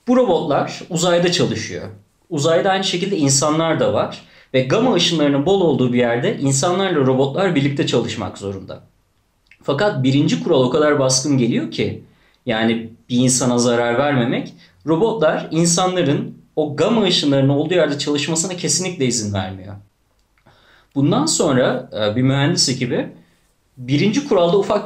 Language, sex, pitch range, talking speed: Turkish, male, 115-160 Hz, 130 wpm